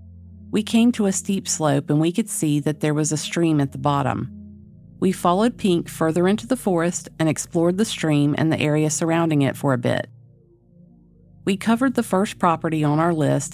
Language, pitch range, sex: English, 140-195 Hz, female